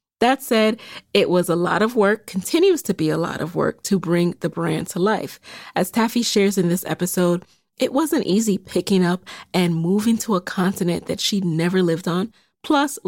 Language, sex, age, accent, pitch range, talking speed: English, female, 30-49, American, 175-220 Hz, 195 wpm